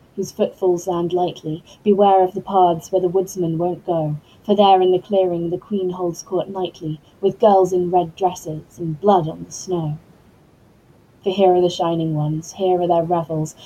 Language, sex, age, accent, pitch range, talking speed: English, female, 20-39, British, 165-185 Hz, 190 wpm